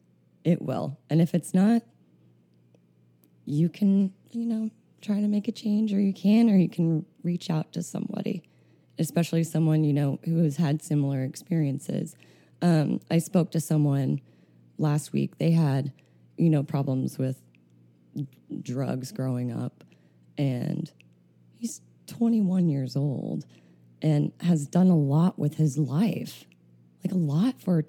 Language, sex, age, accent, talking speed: English, female, 20-39, American, 145 wpm